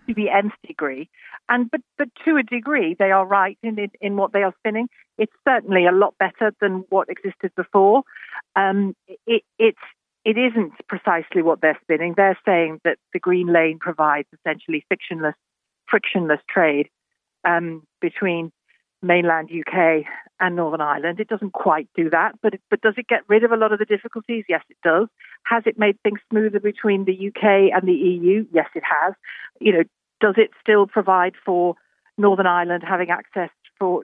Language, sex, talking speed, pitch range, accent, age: English, female, 180 wpm, 175-220 Hz, British, 50-69